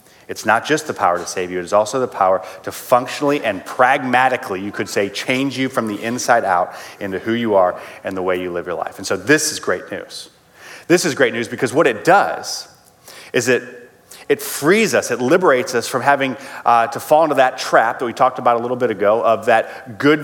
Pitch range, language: 110-140 Hz, English